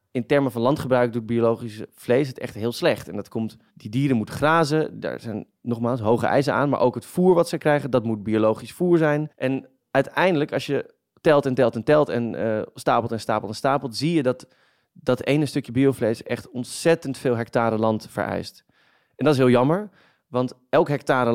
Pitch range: 115-145 Hz